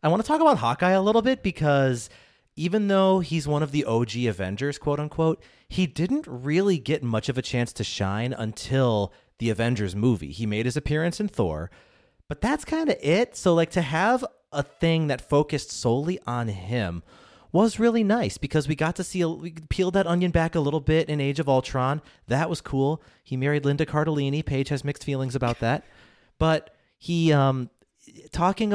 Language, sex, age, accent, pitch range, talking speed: English, male, 30-49, American, 120-165 Hz, 195 wpm